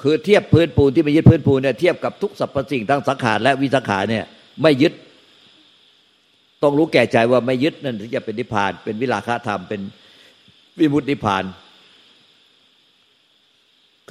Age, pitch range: 60-79, 110-140 Hz